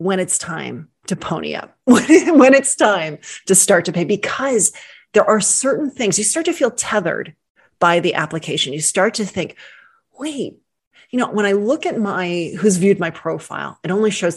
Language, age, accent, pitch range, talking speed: English, 30-49, American, 165-210 Hz, 190 wpm